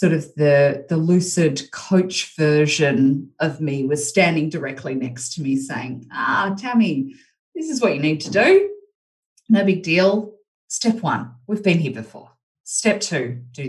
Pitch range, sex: 150-190 Hz, female